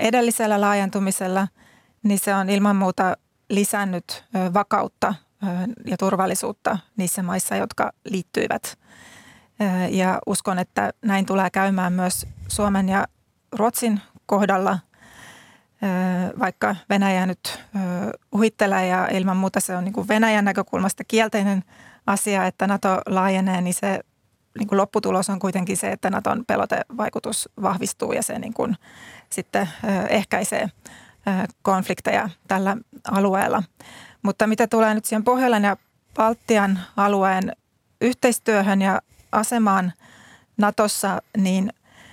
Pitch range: 190-220 Hz